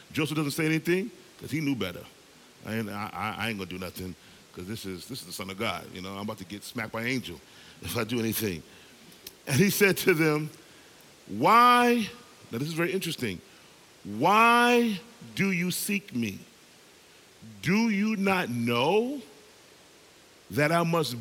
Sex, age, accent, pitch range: male, 40-59, American, 115-185 Hz